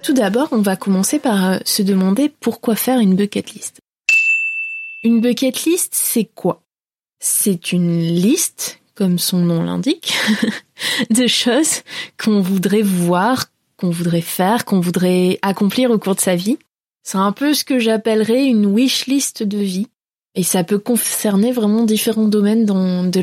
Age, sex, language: 20-39, female, French